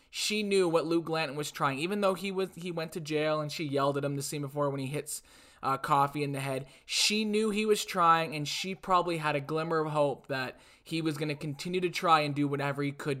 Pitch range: 145-175 Hz